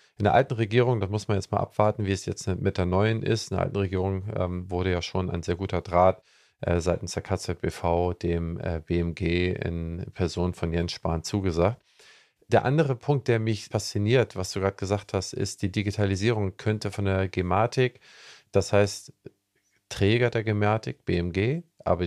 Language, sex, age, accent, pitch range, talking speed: German, male, 40-59, German, 90-105 Hz, 180 wpm